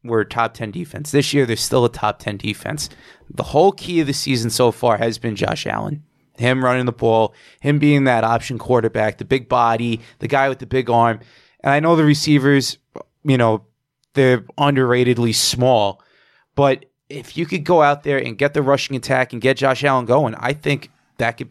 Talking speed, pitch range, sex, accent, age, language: 205 wpm, 115-145 Hz, male, American, 20-39, English